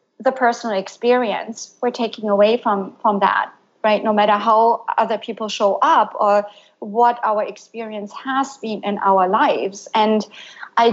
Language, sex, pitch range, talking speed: English, female, 210-250 Hz, 155 wpm